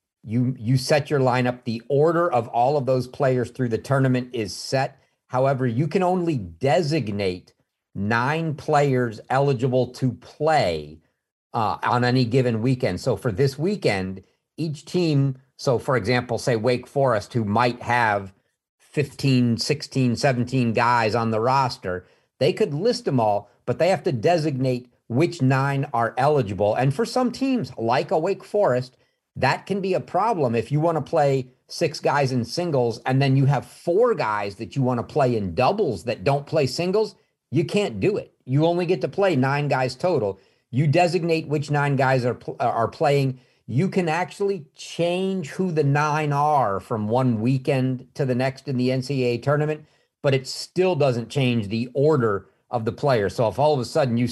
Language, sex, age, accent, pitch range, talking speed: English, male, 50-69, American, 120-150 Hz, 180 wpm